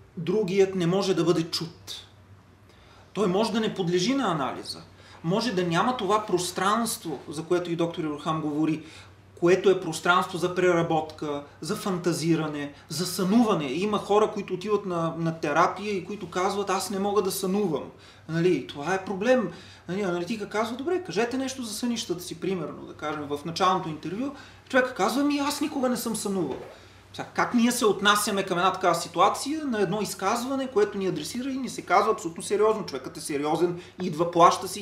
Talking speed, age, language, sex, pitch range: 170 wpm, 30-49, Bulgarian, male, 165-215 Hz